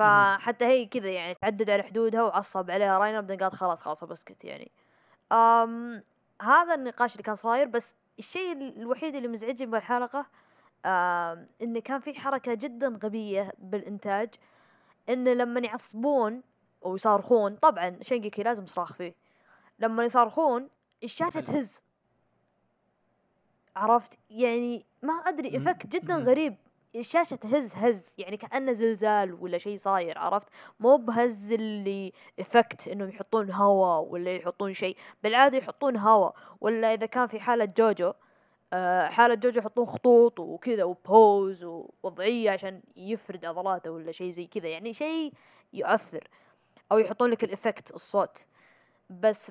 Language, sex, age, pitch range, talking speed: Arabic, female, 20-39, 200-255 Hz, 130 wpm